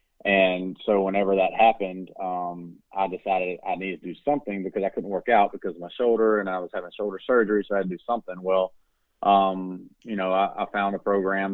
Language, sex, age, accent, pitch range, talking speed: English, male, 30-49, American, 90-100 Hz, 225 wpm